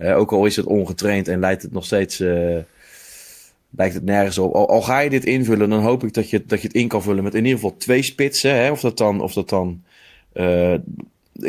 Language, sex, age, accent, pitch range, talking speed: Dutch, male, 30-49, Dutch, 95-125 Hz, 245 wpm